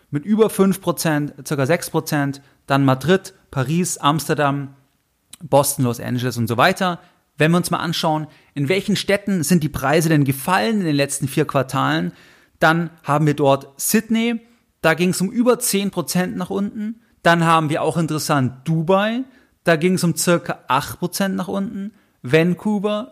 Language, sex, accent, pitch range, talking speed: German, male, German, 145-185 Hz, 160 wpm